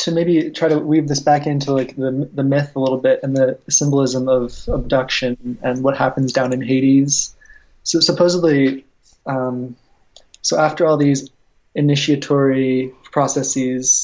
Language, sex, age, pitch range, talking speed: English, male, 20-39, 130-150 Hz, 150 wpm